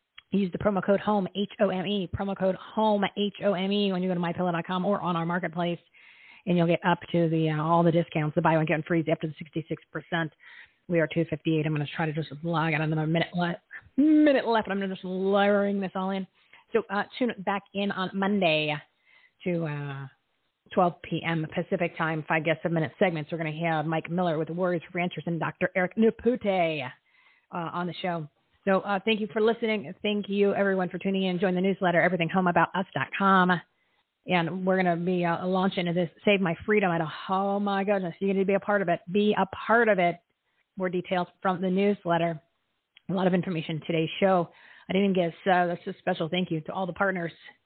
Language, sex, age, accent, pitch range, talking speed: English, female, 40-59, American, 170-195 Hz, 210 wpm